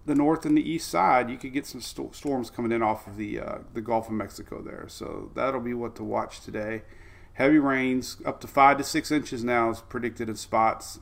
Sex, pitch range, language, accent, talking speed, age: male, 110-145 Hz, English, American, 235 wpm, 30-49